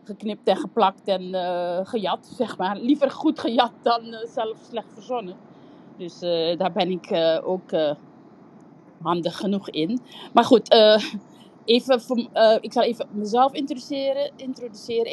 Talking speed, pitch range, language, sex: 150 wpm, 185-235 Hz, Dutch, female